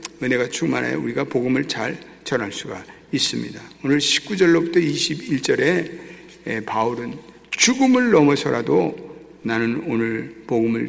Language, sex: Korean, male